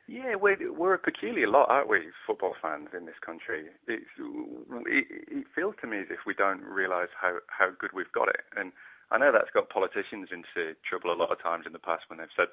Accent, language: British, English